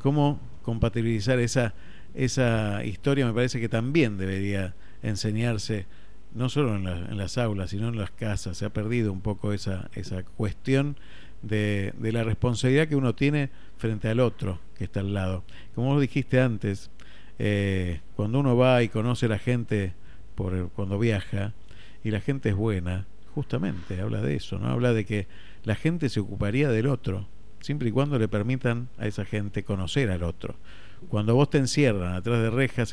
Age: 50-69